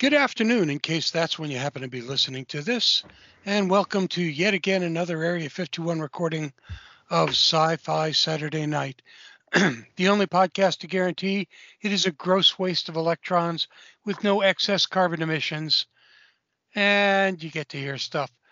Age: 60-79